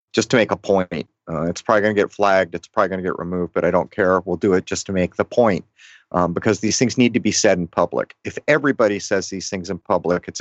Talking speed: 275 wpm